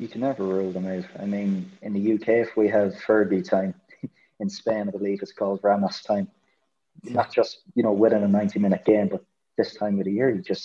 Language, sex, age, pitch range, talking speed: English, male, 30-49, 100-120 Hz, 225 wpm